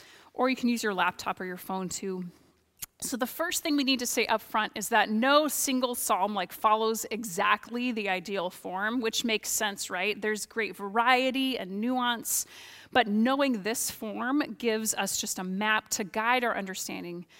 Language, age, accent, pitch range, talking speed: English, 30-49, American, 210-255 Hz, 185 wpm